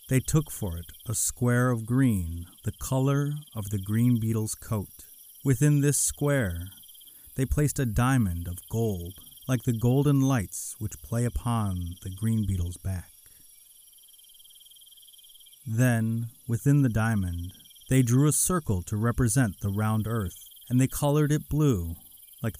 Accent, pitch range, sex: American, 95-130 Hz, male